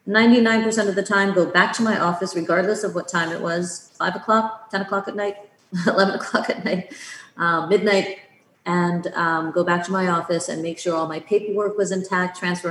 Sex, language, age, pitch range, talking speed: female, English, 30-49, 165-200 Hz, 200 wpm